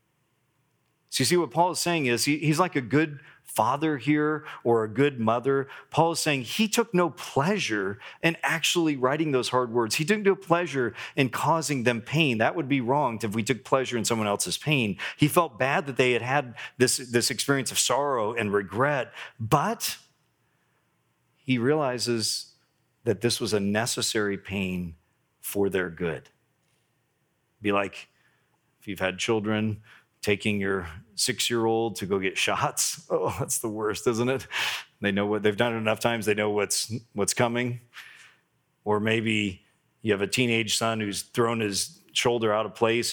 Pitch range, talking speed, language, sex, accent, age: 105-140 Hz, 170 wpm, English, male, American, 40-59